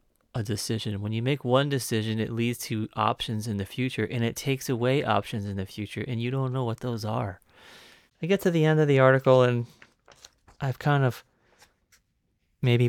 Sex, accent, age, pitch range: male, American, 30-49, 105-130 Hz